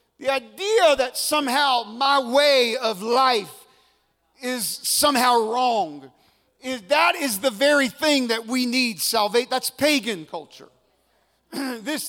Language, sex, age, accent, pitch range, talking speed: English, male, 40-59, American, 245-290 Hz, 125 wpm